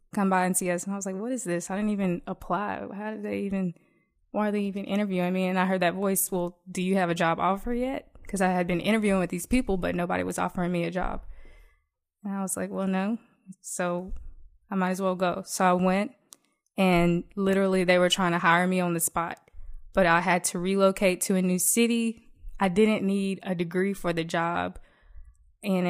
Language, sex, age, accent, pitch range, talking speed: English, female, 20-39, American, 175-195 Hz, 225 wpm